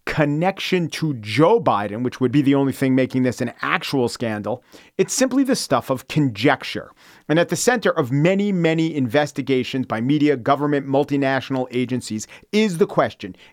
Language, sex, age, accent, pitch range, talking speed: English, male, 40-59, American, 130-180 Hz, 165 wpm